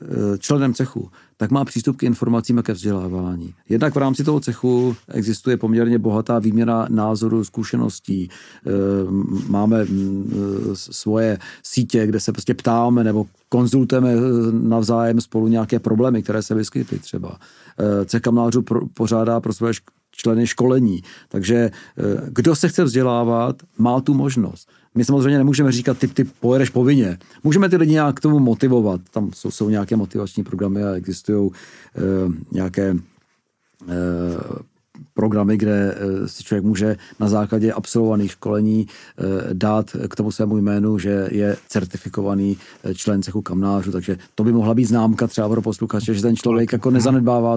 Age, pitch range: 40-59, 100-120 Hz